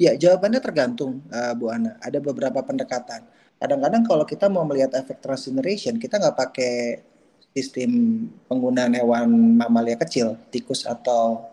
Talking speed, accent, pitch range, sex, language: 135 wpm, native, 125-195 Hz, male, Indonesian